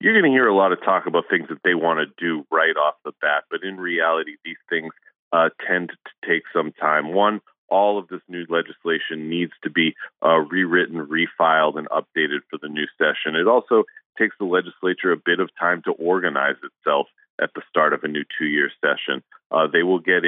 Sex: male